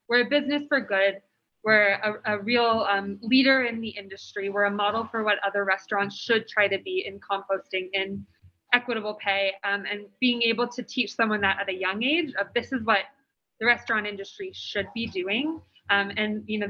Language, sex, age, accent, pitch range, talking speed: English, female, 20-39, American, 200-235 Hz, 200 wpm